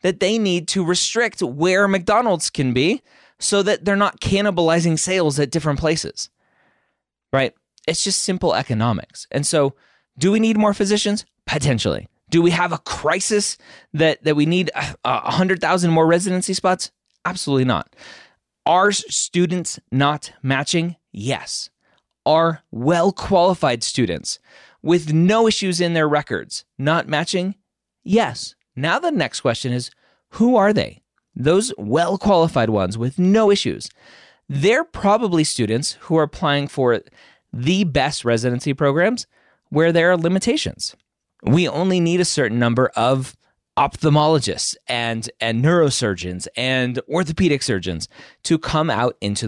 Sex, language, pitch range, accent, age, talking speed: male, English, 125-185 Hz, American, 30-49, 135 wpm